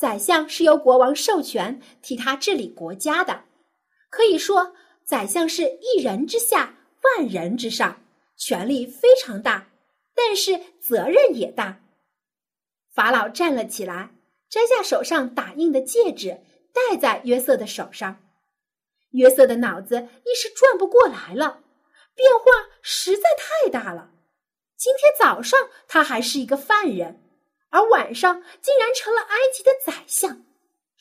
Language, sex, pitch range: Chinese, female, 250-405 Hz